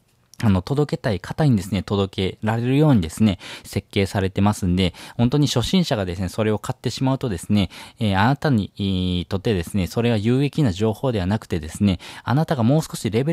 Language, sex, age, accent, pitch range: Japanese, male, 20-39, native, 95-125 Hz